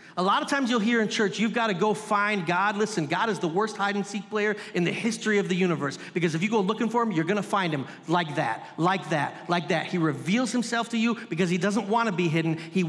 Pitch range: 165-215 Hz